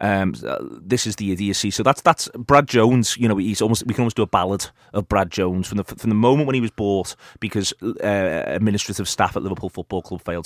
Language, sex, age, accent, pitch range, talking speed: English, male, 30-49, British, 95-110 Hz, 235 wpm